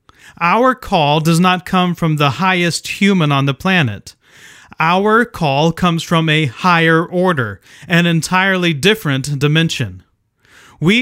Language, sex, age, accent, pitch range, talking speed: English, male, 30-49, American, 145-185 Hz, 130 wpm